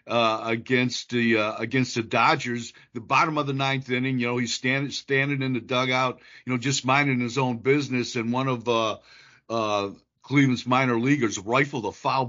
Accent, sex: American, male